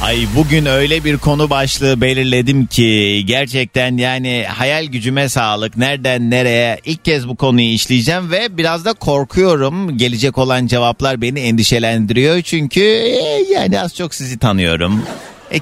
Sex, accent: male, native